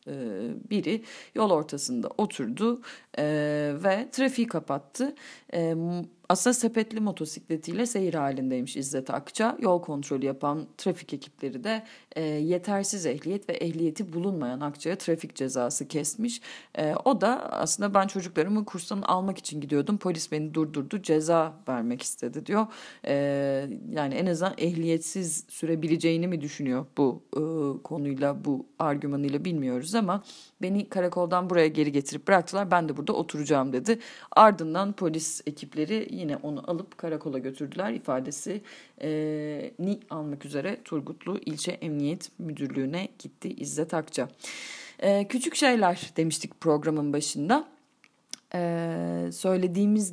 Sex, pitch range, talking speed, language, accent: female, 150-200 Hz, 115 wpm, Turkish, native